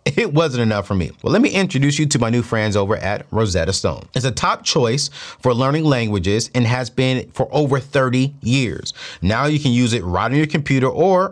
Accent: American